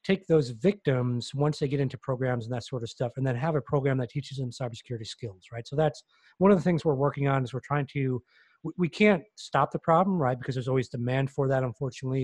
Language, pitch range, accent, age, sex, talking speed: English, 125-150 Hz, American, 30-49, male, 250 wpm